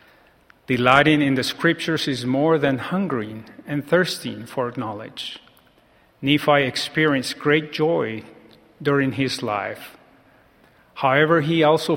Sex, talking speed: male, 110 wpm